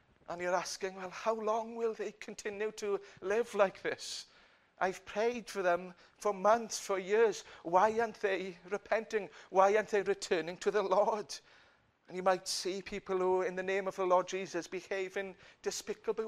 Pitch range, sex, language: 140-210 Hz, male, English